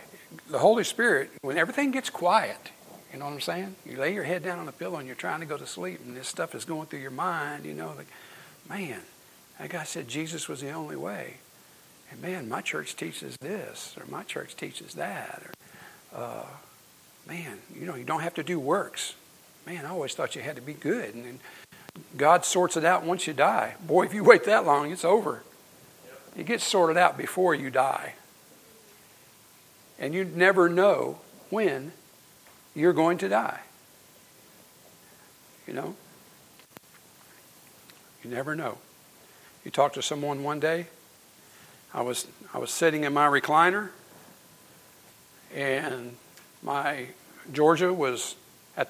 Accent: American